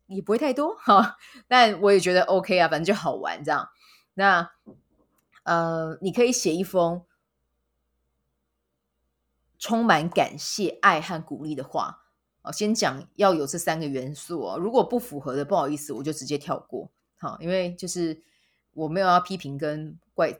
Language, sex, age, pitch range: Chinese, female, 20-39, 140-190 Hz